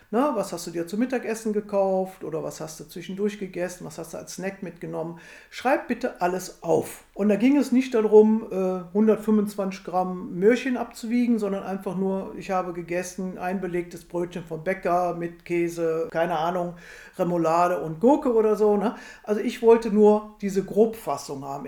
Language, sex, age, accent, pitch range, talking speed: German, female, 50-69, German, 180-235 Hz, 170 wpm